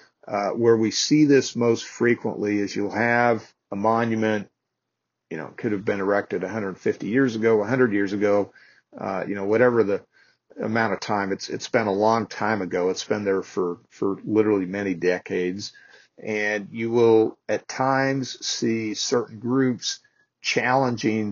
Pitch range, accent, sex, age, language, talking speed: 100-120 Hz, American, male, 50-69, English, 160 wpm